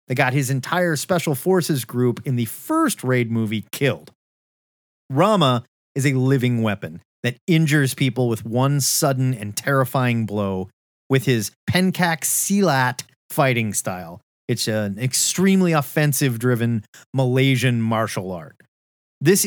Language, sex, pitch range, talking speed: English, male, 120-165 Hz, 125 wpm